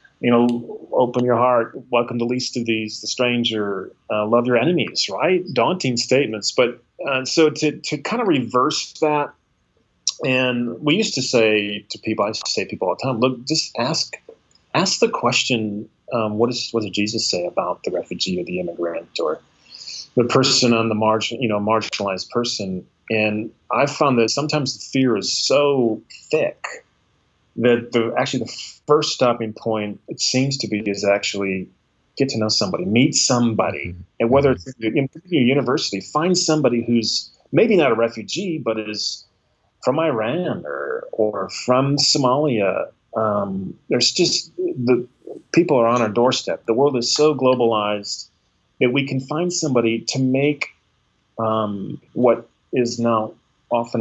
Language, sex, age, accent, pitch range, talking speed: English, male, 30-49, American, 110-135 Hz, 165 wpm